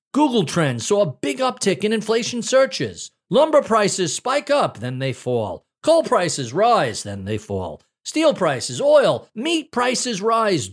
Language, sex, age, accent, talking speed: English, male, 40-59, American, 155 wpm